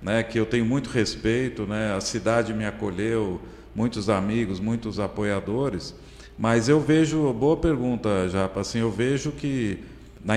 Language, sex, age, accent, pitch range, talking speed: Portuguese, male, 50-69, Brazilian, 100-125 Hz, 150 wpm